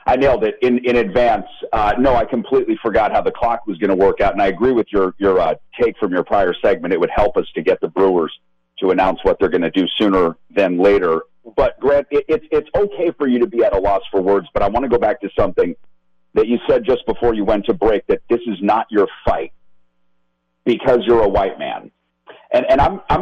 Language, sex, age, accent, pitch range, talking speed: English, male, 50-69, American, 90-145 Hz, 250 wpm